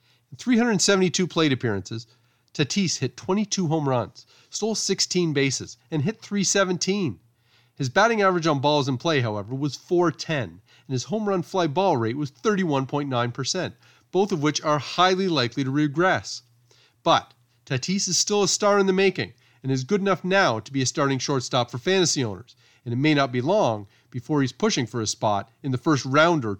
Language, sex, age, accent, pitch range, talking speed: English, male, 40-59, American, 120-175 Hz, 185 wpm